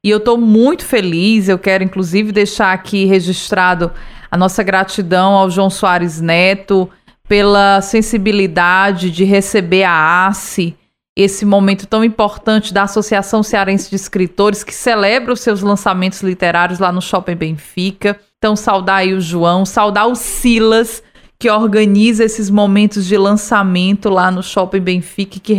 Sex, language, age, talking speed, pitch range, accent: female, Portuguese, 20-39, 145 wpm, 190-220 Hz, Brazilian